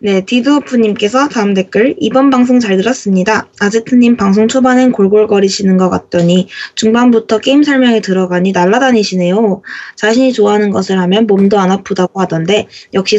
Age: 20-39